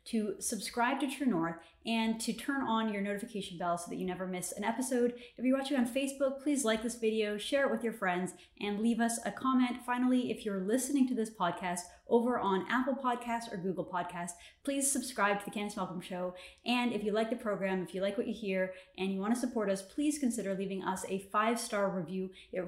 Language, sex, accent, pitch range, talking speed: English, female, American, 190-240 Hz, 225 wpm